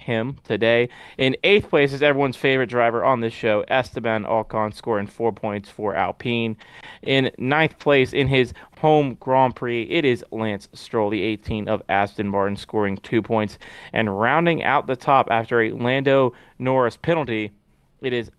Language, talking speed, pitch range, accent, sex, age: English, 165 wpm, 105-130 Hz, American, male, 30-49